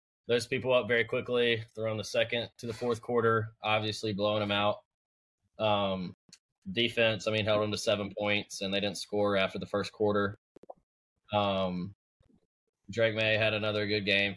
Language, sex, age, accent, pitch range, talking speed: English, male, 20-39, American, 100-110 Hz, 165 wpm